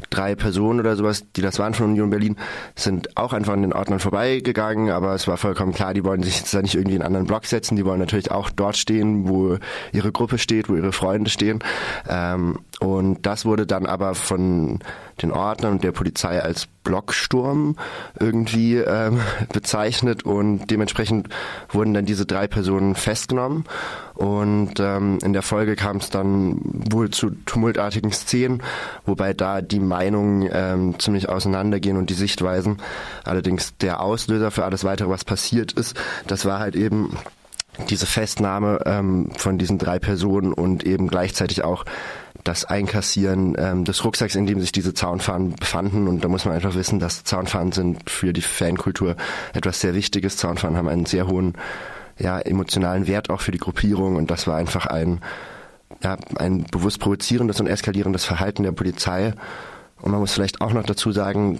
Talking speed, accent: 175 wpm, German